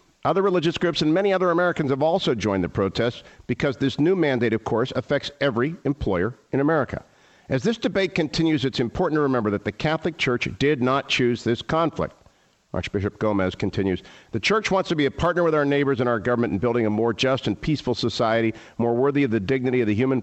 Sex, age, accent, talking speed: male, 50-69, American, 215 wpm